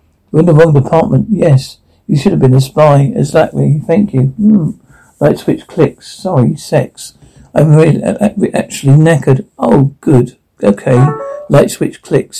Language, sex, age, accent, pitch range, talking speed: English, male, 60-79, British, 130-180 Hz, 150 wpm